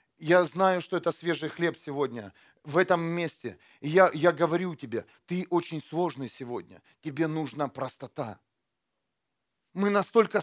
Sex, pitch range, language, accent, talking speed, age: male, 155-210 Hz, Russian, native, 130 wpm, 40-59